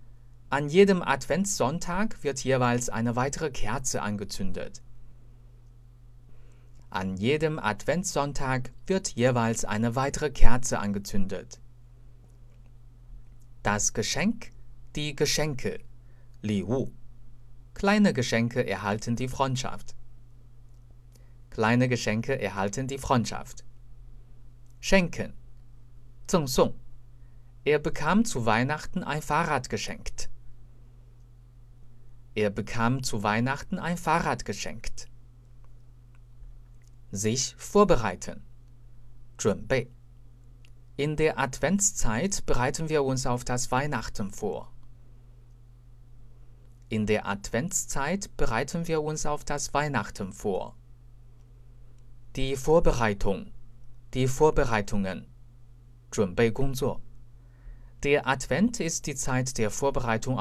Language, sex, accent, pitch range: Chinese, male, German, 120-135 Hz